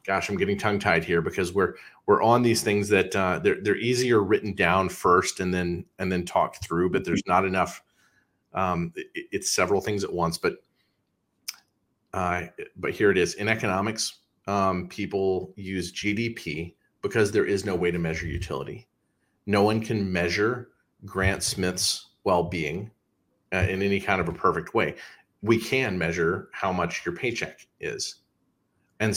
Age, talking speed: 30-49, 165 wpm